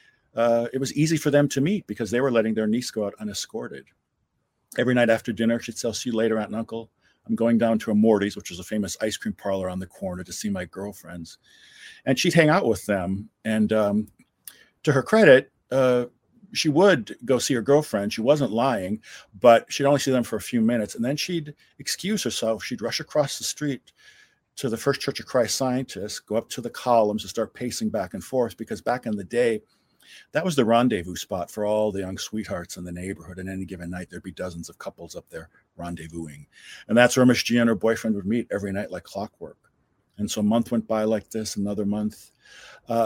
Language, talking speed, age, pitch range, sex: English, 225 wpm, 50-69, 105-125 Hz, male